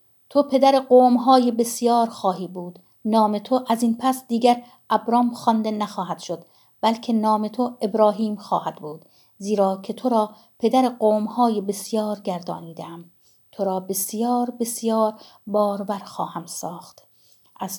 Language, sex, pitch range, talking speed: Persian, female, 195-240 Hz, 130 wpm